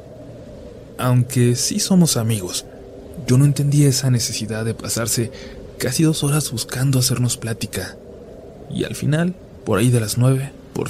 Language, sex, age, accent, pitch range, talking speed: Spanish, male, 20-39, Mexican, 105-135 Hz, 145 wpm